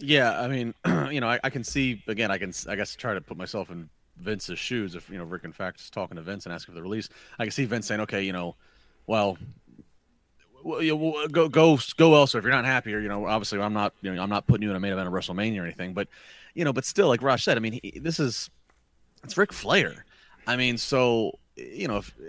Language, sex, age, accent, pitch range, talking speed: English, male, 30-49, American, 100-145 Hz, 255 wpm